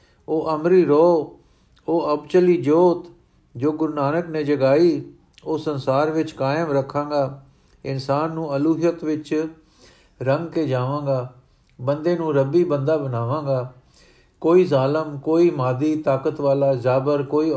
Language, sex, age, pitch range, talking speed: Punjabi, male, 50-69, 130-155 Hz, 125 wpm